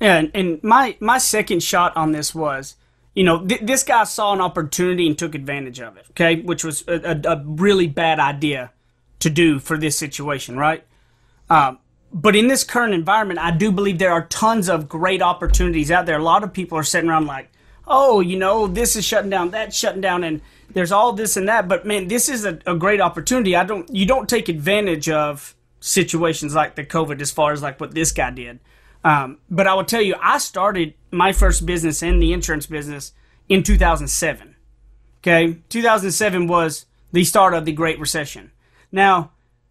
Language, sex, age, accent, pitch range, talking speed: English, male, 30-49, American, 155-200 Hz, 200 wpm